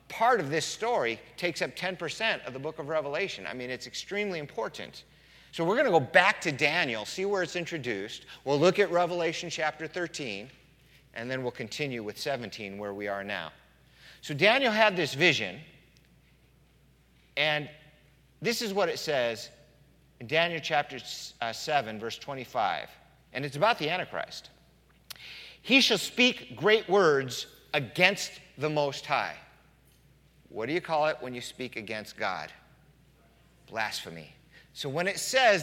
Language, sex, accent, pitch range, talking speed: English, male, American, 130-180 Hz, 155 wpm